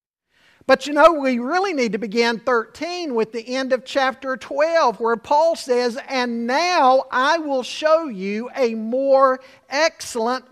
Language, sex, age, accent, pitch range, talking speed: English, male, 50-69, American, 220-285 Hz, 155 wpm